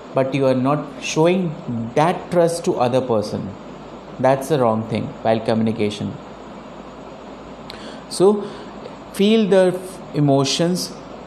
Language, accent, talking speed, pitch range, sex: Hindi, native, 105 wpm, 135-180 Hz, male